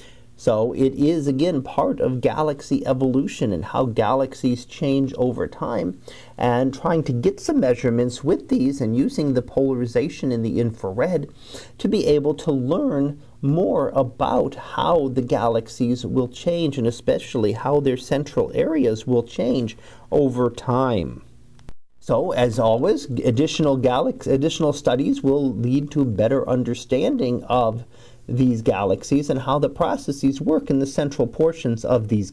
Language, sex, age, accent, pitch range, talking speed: English, male, 40-59, American, 120-145 Hz, 140 wpm